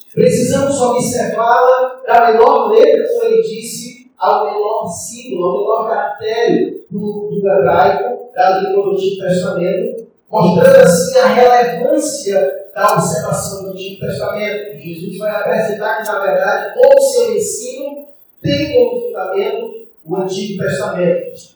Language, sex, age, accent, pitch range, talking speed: Portuguese, male, 40-59, Brazilian, 195-290 Hz, 130 wpm